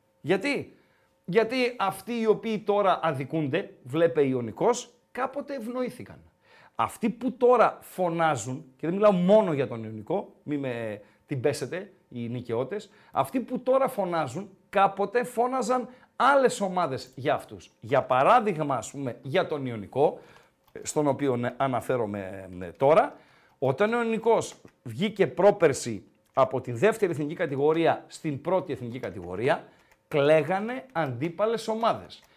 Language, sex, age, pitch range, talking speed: Greek, male, 50-69, 140-215 Hz, 120 wpm